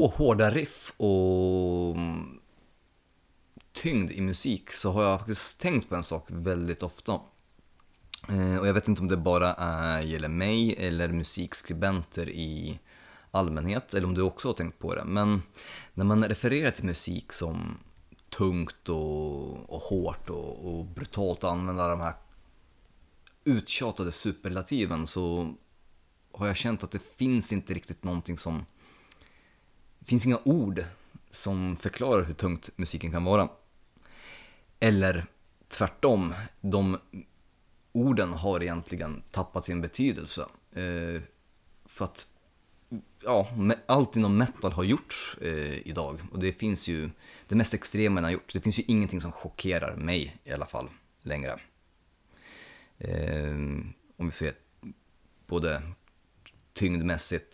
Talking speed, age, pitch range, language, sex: 130 wpm, 30-49, 85-100 Hz, Swedish, male